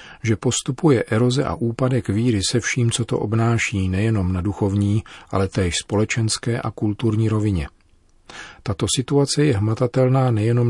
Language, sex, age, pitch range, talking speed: Czech, male, 40-59, 90-110 Hz, 140 wpm